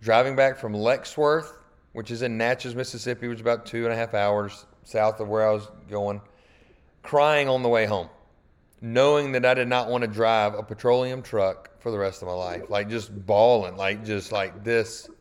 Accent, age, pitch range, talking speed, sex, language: American, 30-49, 100-125 Hz, 205 wpm, male, English